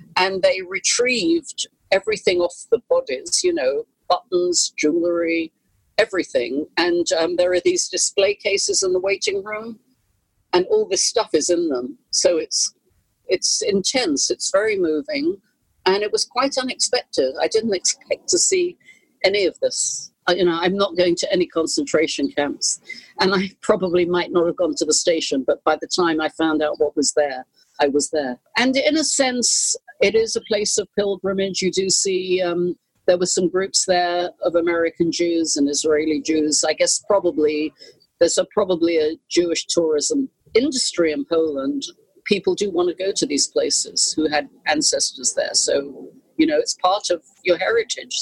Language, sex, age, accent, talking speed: English, female, 50-69, British, 170 wpm